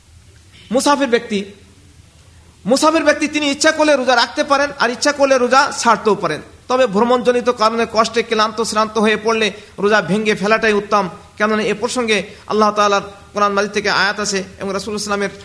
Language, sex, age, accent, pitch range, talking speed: Bengali, male, 50-69, native, 210-260 Hz, 130 wpm